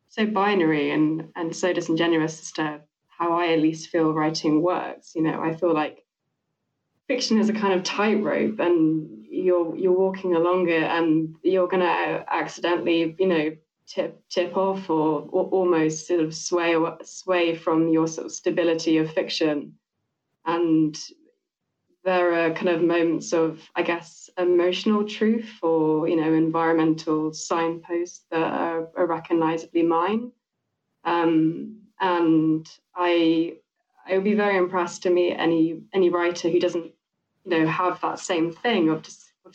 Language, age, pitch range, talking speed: English, 20-39, 160-180 Hz, 150 wpm